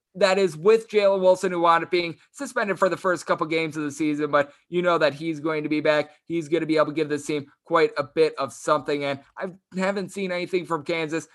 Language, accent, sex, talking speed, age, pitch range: English, American, male, 255 wpm, 20-39, 145-175 Hz